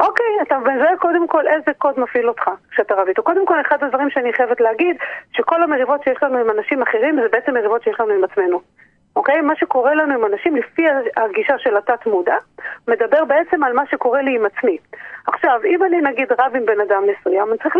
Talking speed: 215 wpm